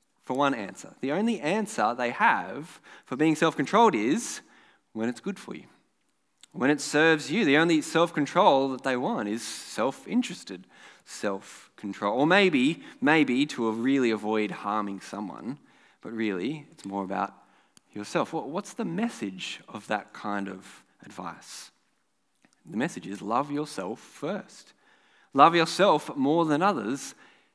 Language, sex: English, male